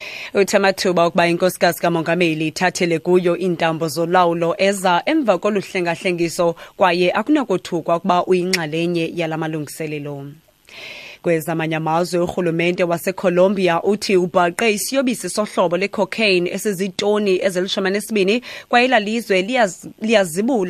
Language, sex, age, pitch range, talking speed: English, female, 20-39, 140-185 Hz, 130 wpm